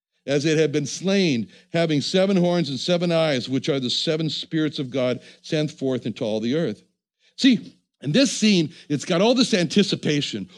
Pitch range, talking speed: 135-180 Hz, 185 wpm